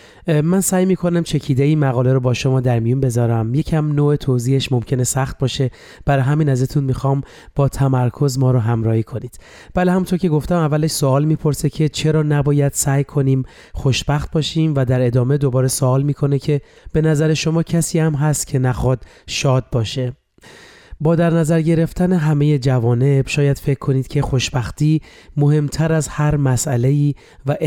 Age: 30-49